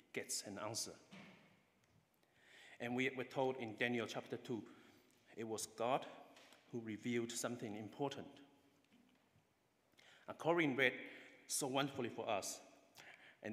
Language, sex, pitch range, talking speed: English, male, 100-130 Hz, 115 wpm